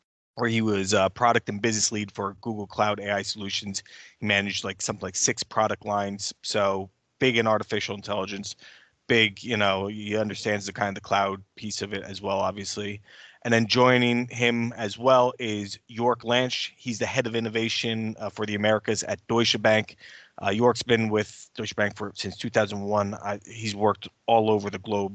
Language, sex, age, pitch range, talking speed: English, male, 20-39, 100-115 Hz, 185 wpm